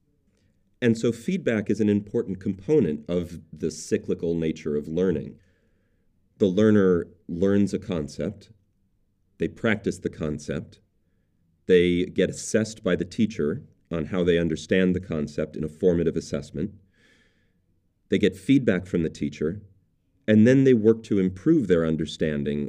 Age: 40-59